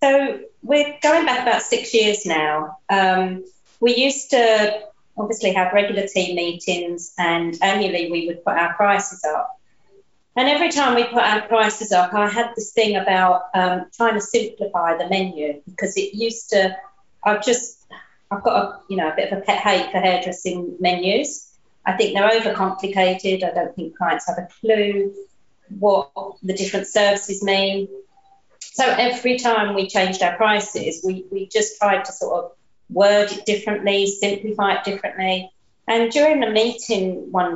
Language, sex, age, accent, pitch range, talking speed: English, female, 40-59, British, 190-235 Hz, 165 wpm